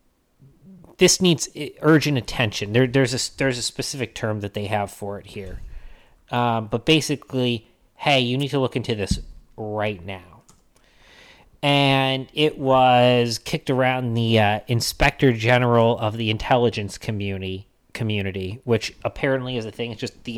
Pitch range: 105-130 Hz